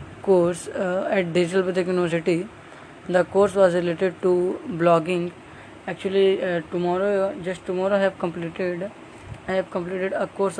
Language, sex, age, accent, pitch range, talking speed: English, female, 20-39, Indian, 180-195 Hz, 140 wpm